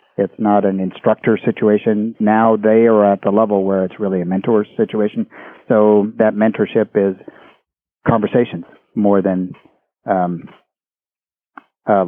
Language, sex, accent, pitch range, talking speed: English, male, American, 95-110 Hz, 130 wpm